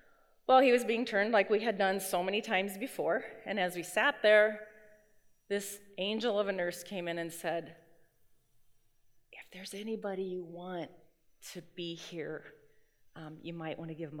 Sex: female